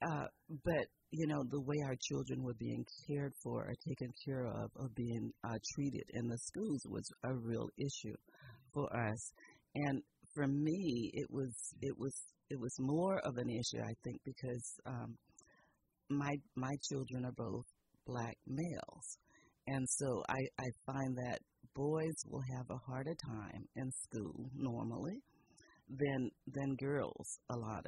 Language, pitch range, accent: English, 115-140 Hz, American